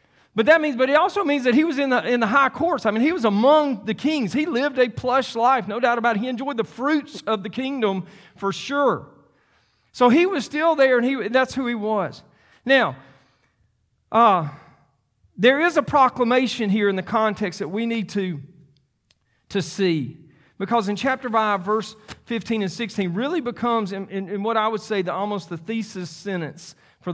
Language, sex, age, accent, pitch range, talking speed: English, male, 40-59, American, 175-230 Hz, 200 wpm